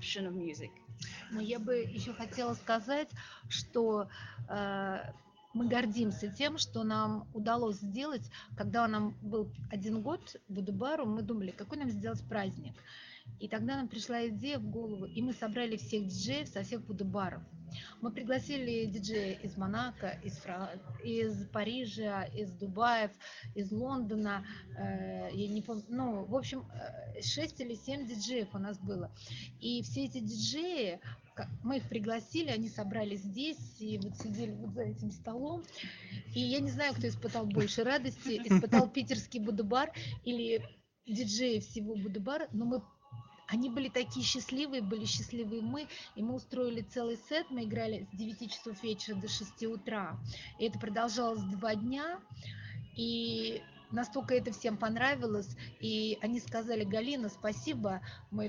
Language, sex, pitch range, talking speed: French, female, 185-240 Hz, 145 wpm